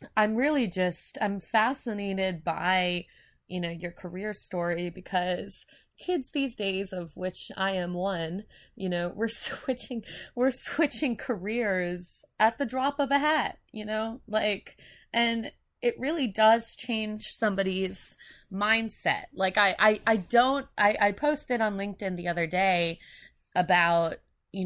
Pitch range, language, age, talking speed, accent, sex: 175-225 Hz, English, 20-39, 140 wpm, American, female